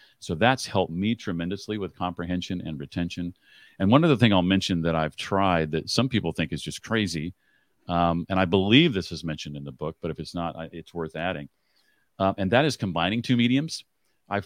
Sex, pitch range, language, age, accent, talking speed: male, 85-110 Hz, English, 40-59, American, 210 wpm